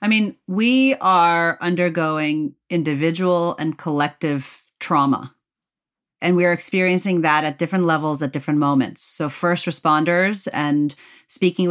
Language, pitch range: English, 150-185 Hz